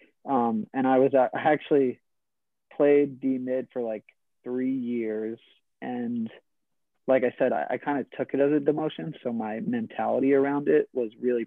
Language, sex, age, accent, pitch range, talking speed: English, male, 20-39, American, 110-130 Hz, 180 wpm